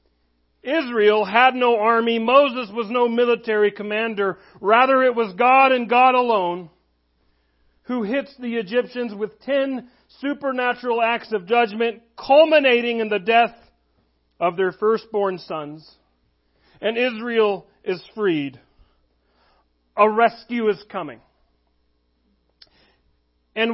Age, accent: 40-59, American